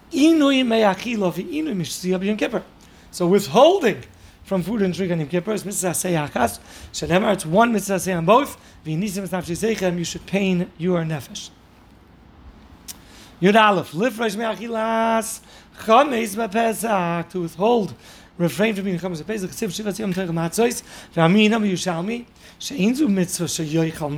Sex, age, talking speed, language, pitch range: male, 40-59, 70 wpm, English, 165-215 Hz